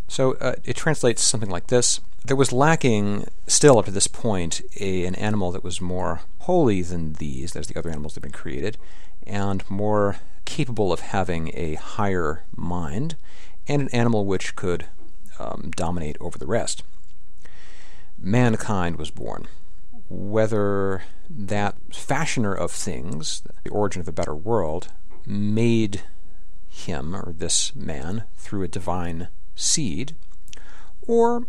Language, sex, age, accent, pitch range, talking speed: English, male, 50-69, American, 85-120 Hz, 140 wpm